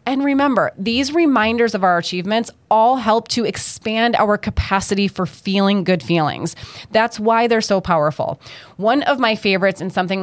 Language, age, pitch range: English, 30-49, 175-230 Hz